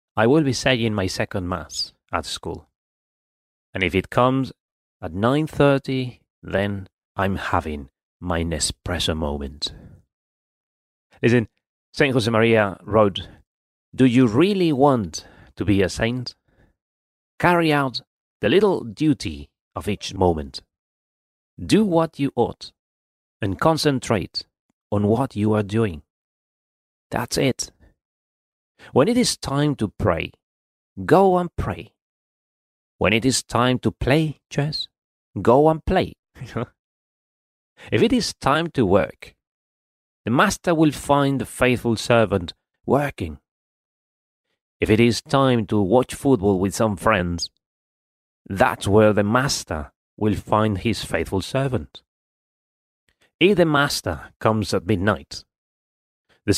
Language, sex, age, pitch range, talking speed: English, male, 30-49, 90-130 Hz, 120 wpm